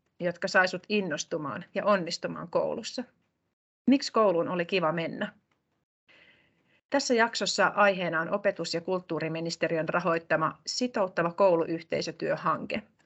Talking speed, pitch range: 95 wpm, 165-205 Hz